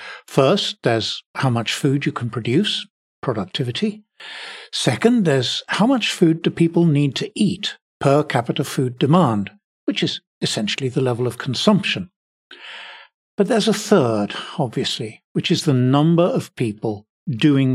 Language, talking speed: English, 140 wpm